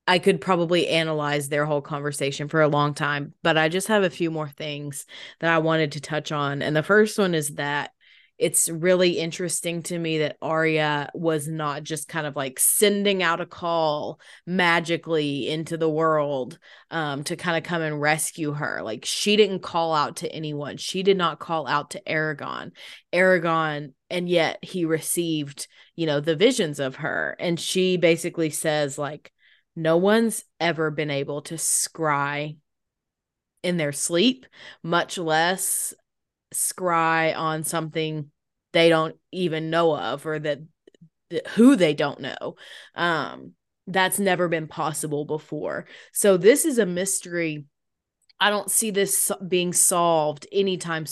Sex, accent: female, American